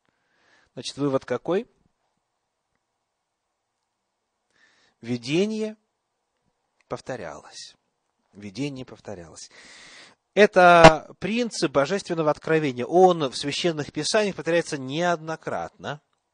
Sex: male